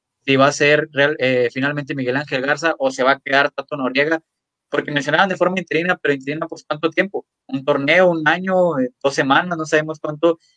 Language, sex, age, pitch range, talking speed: Spanish, male, 20-39, 135-170 Hz, 205 wpm